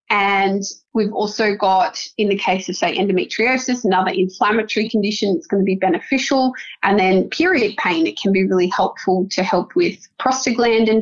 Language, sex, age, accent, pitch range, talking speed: English, female, 20-39, Australian, 190-240 Hz, 170 wpm